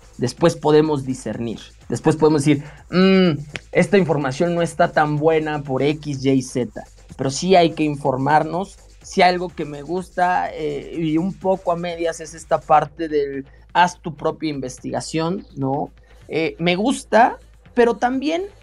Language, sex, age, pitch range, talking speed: Spanish, male, 30-49, 155-215 Hz, 145 wpm